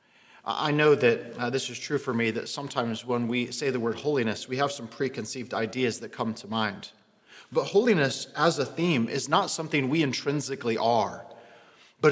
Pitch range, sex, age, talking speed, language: 130-180 Hz, male, 30-49, 190 wpm, English